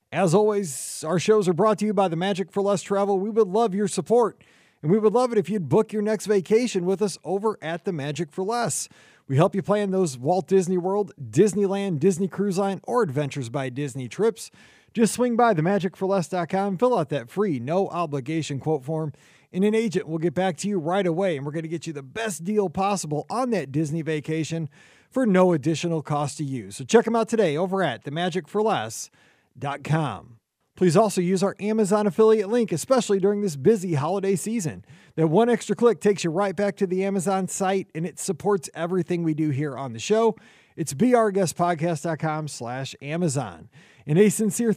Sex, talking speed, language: male, 205 wpm, English